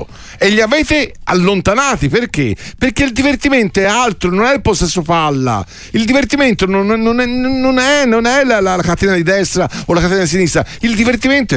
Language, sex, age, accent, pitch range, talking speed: Italian, male, 50-69, native, 155-225 Hz, 185 wpm